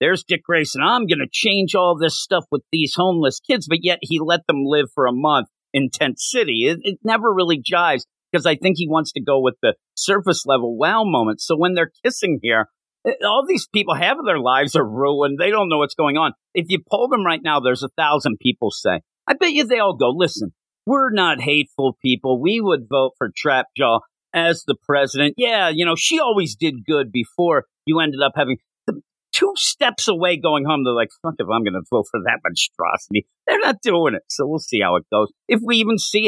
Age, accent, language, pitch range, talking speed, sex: 50-69, American, English, 135-190 Hz, 225 wpm, male